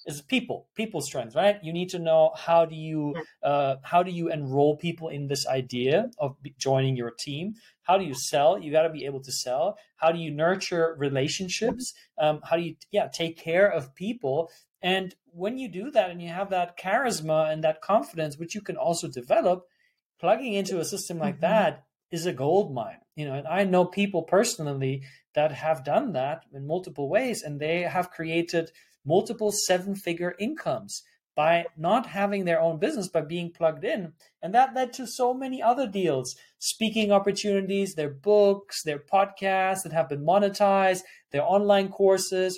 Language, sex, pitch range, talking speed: English, male, 155-200 Hz, 180 wpm